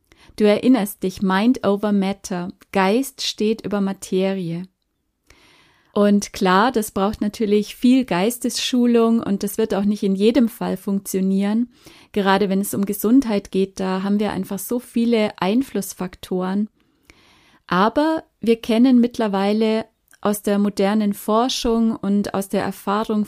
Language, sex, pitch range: German, female, 195-225 Hz